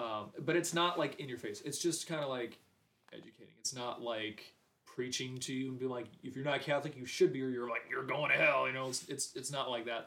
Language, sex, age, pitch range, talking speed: English, male, 20-39, 115-130 Hz, 270 wpm